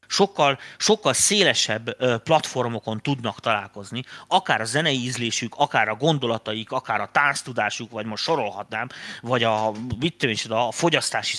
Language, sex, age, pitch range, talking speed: Hungarian, male, 30-49, 115-165 Hz, 130 wpm